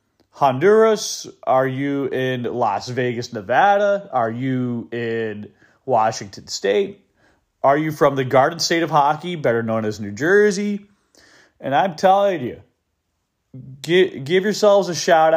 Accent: American